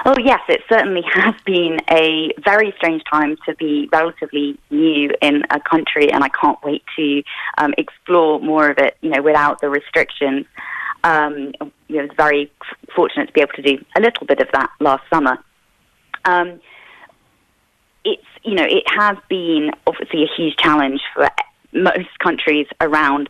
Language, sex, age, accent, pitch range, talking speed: English, female, 20-39, British, 140-165 Hz, 175 wpm